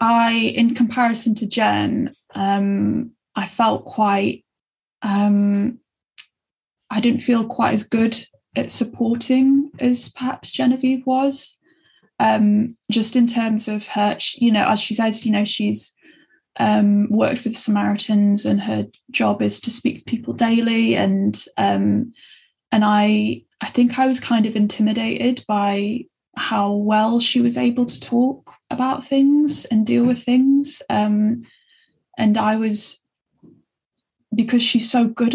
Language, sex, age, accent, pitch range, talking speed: English, female, 10-29, British, 215-245 Hz, 140 wpm